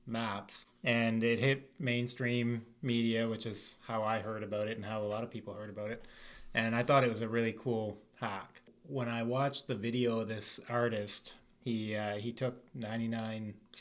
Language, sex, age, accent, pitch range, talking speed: English, male, 30-49, American, 110-125 Hz, 190 wpm